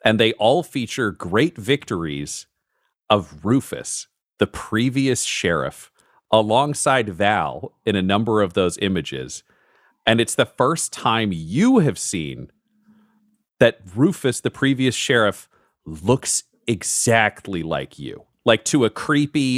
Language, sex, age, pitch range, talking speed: English, male, 40-59, 95-130 Hz, 125 wpm